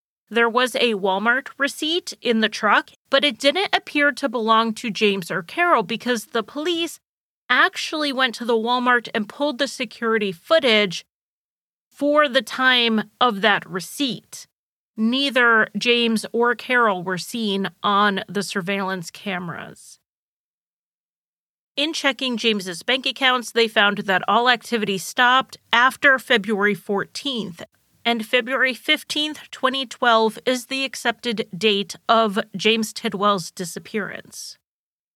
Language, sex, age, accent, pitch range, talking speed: English, female, 30-49, American, 205-260 Hz, 125 wpm